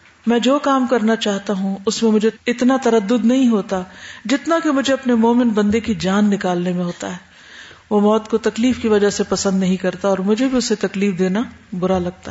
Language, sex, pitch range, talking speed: Urdu, female, 190-220 Hz, 210 wpm